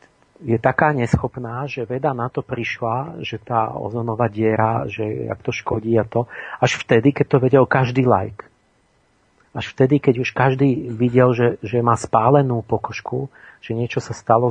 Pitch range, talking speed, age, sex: 110-125 Hz, 170 wpm, 40-59, male